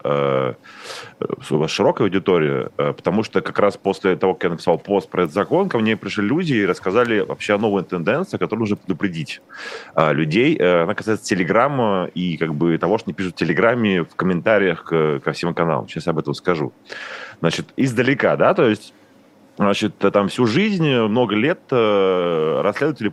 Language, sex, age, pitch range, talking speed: Russian, male, 30-49, 80-110 Hz, 165 wpm